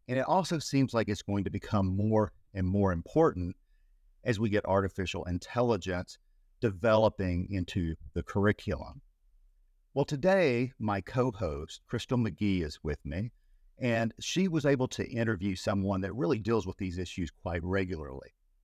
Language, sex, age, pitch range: English, male, 50-69, 95-130 Hz